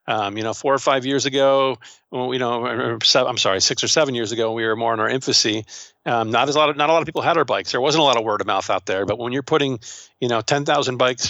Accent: American